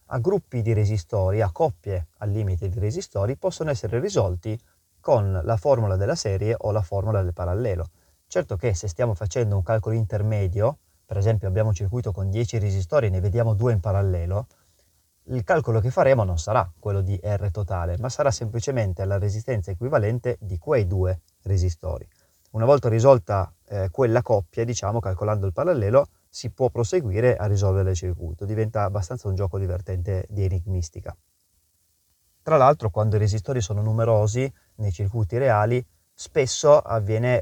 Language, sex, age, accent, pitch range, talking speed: Italian, male, 30-49, native, 95-115 Hz, 160 wpm